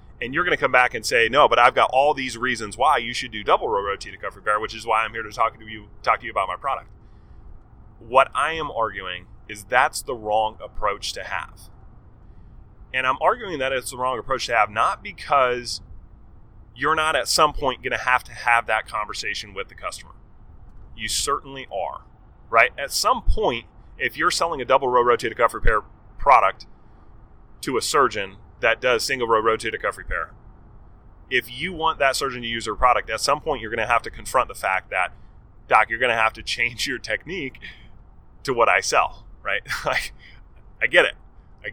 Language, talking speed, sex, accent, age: English, 205 wpm, male, American, 30-49